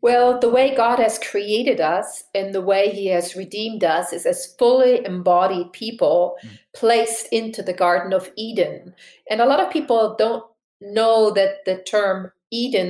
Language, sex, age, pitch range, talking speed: English, female, 40-59, 185-230 Hz, 165 wpm